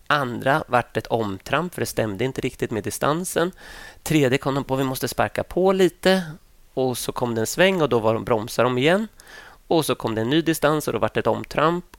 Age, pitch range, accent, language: 30-49, 115-165 Hz, native, Swedish